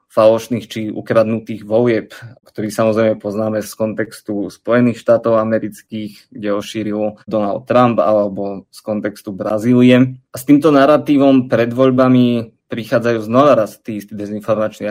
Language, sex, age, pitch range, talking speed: Slovak, male, 20-39, 105-115 Hz, 135 wpm